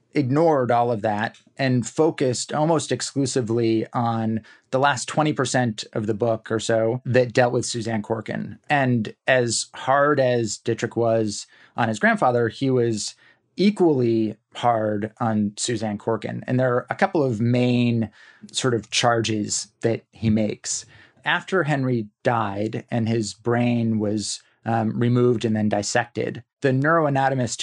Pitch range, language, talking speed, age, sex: 110-130 Hz, English, 140 wpm, 30-49, male